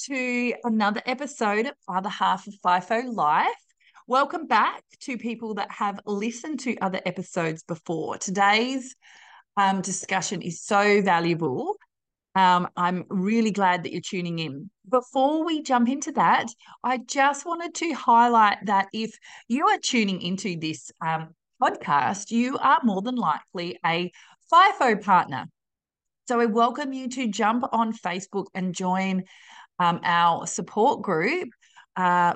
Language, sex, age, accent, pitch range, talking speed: English, female, 30-49, Australian, 180-240 Hz, 140 wpm